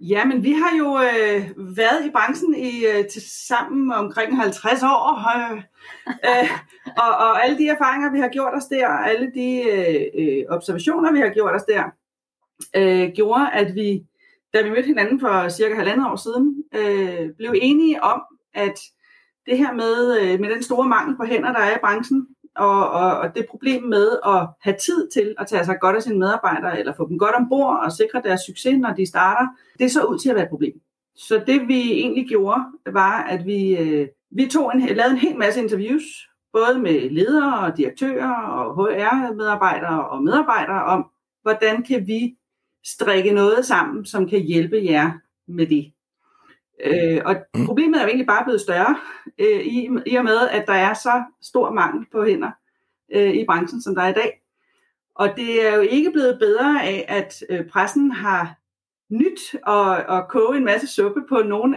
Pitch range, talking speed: 195-270 Hz, 180 wpm